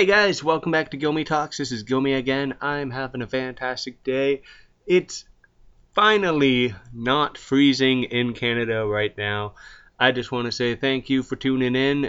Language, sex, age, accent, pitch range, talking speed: English, male, 20-39, American, 120-140 Hz, 170 wpm